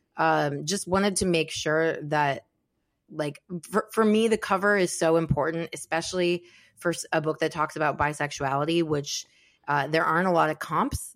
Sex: female